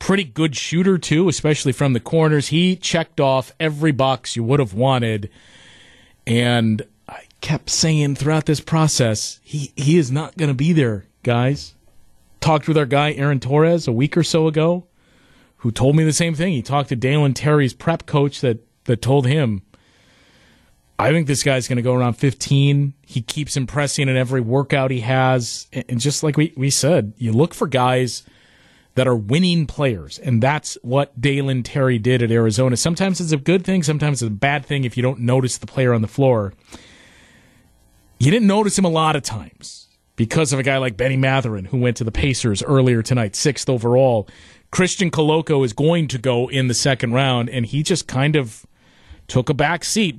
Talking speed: 195 wpm